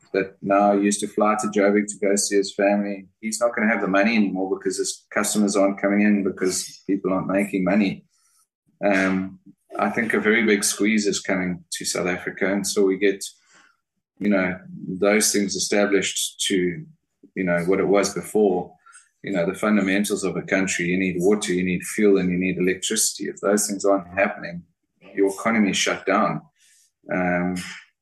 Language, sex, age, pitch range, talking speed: English, male, 20-39, 95-105 Hz, 185 wpm